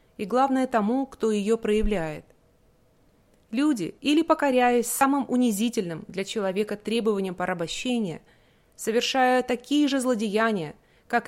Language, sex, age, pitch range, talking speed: English, female, 30-49, 190-250 Hz, 105 wpm